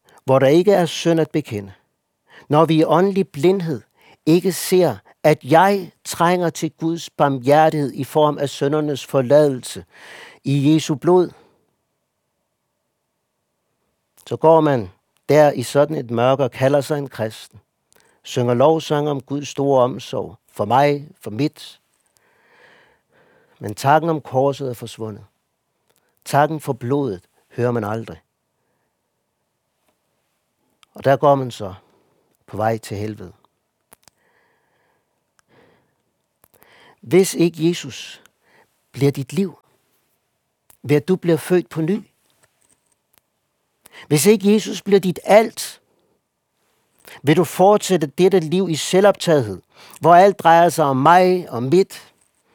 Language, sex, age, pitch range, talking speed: Danish, male, 60-79, 130-170 Hz, 120 wpm